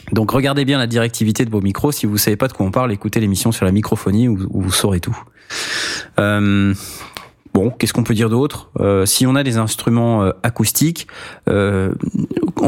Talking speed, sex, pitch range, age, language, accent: 195 wpm, male, 105-130 Hz, 20-39, French, French